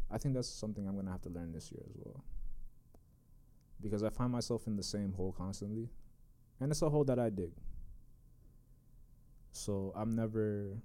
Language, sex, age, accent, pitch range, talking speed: English, male, 20-39, American, 85-115 Hz, 185 wpm